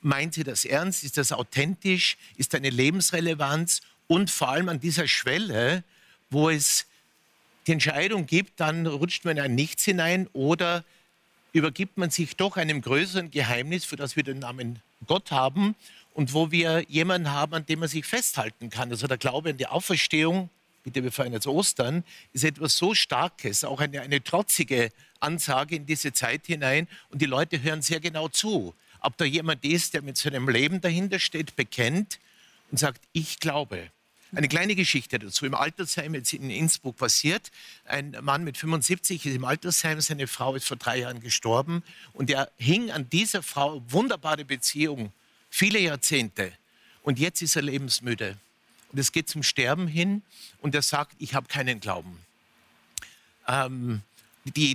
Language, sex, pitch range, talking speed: German, male, 130-170 Hz, 170 wpm